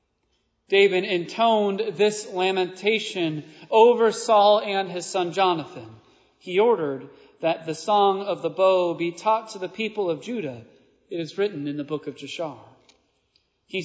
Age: 40-59